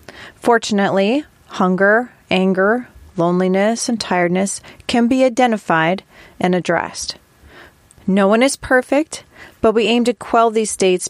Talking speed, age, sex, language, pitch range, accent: 120 wpm, 30-49, female, English, 180-225 Hz, American